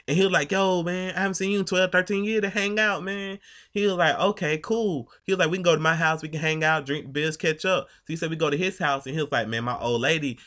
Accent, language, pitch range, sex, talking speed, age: American, English, 130-190 Hz, male, 320 wpm, 20-39